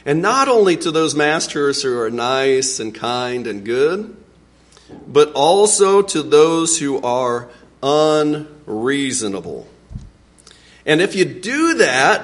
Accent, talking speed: American, 125 wpm